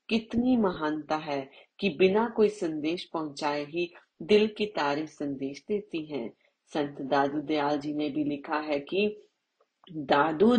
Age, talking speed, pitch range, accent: 40-59, 135 wpm, 150-200 Hz, native